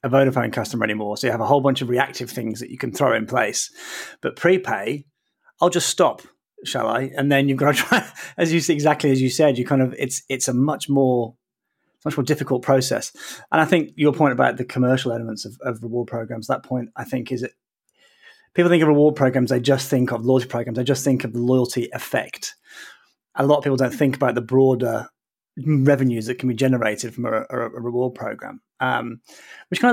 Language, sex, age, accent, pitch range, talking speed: English, male, 30-49, British, 125-150 Hz, 215 wpm